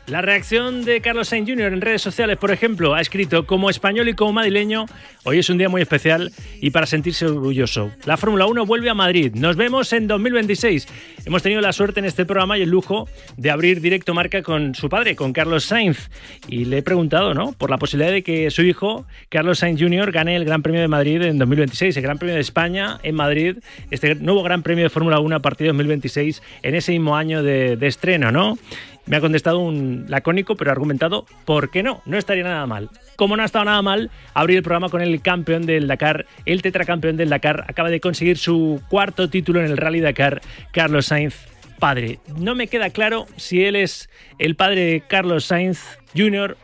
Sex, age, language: male, 30-49, Spanish